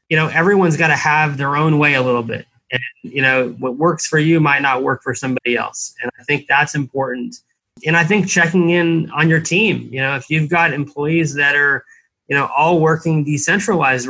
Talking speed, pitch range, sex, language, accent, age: 215 wpm, 135-165 Hz, male, English, American, 30-49